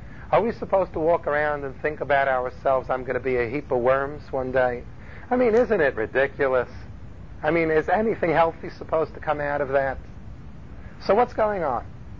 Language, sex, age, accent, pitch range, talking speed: English, male, 50-69, American, 130-180 Hz, 195 wpm